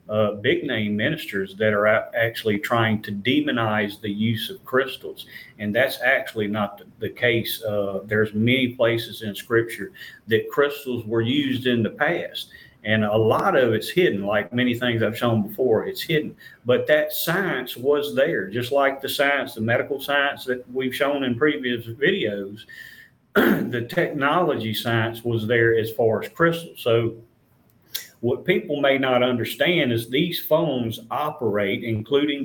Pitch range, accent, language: 110-140 Hz, American, English